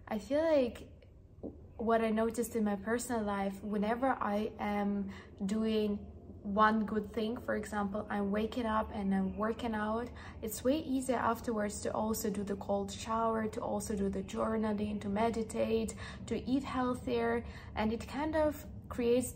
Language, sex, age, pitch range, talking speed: English, female, 20-39, 210-235 Hz, 160 wpm